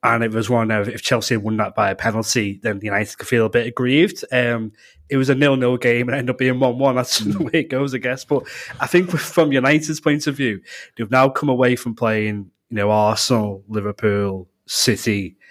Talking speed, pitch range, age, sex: 230 wpm, 110-130 Hz, 20-39, male